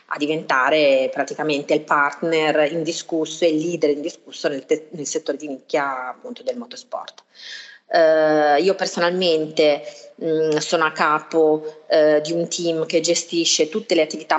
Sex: female